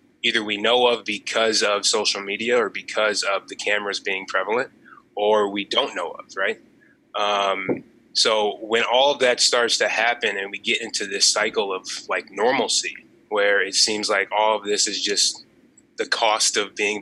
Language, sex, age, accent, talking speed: English, male, 20-39, American, 185 wpm